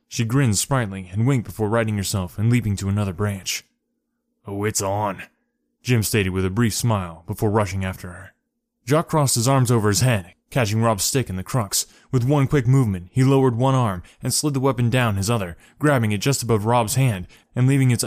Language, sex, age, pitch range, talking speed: English, male, 20-39, 100-130 Hz, 210 wpm